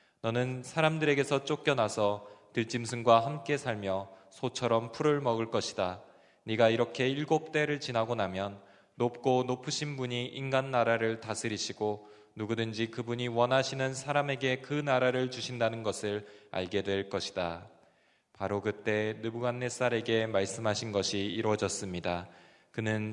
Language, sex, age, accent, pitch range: Korean, male, 20-39, native, 100-125 Hz